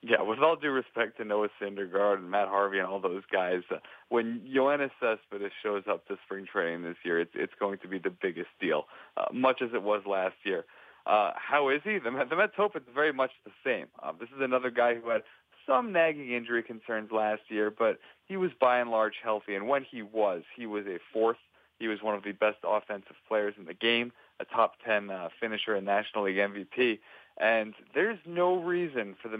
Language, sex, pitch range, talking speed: English, male, 105-125 Hz, 225 wpm